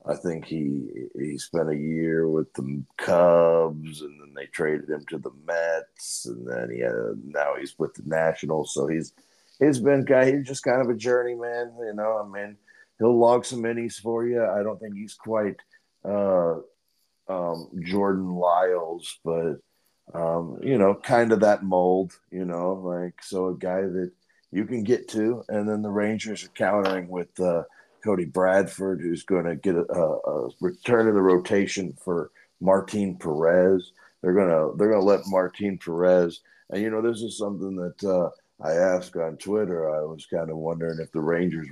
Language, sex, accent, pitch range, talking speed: English, male, American, 80-105 Hz, 185 wpm